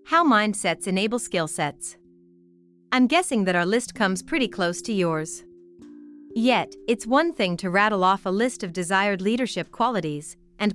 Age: 30-49